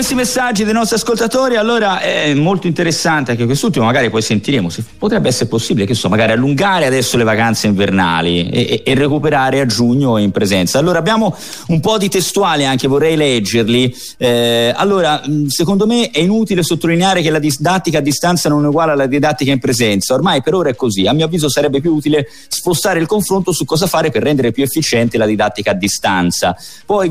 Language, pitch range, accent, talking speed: Italian, 125-180 Hz, native, 195 wpm